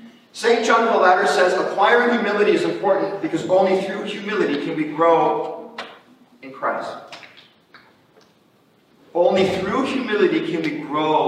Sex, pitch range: male, 165-240 Hz